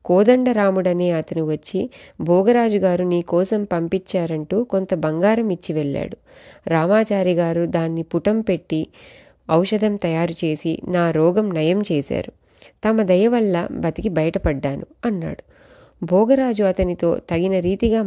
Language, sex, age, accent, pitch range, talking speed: Telugu, female, 30-49, native, 170-215 Hz, 115 wpm